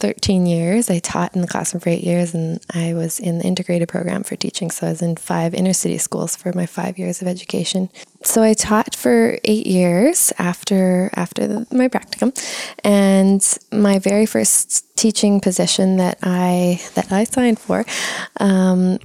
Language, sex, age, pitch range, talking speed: English, female, 20-39, 175-200 Hz, 175 wpm